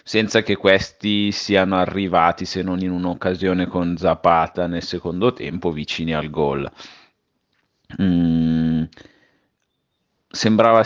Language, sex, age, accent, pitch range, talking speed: Italian, male, 30-49, native, 90-105 Hz, 105 wpm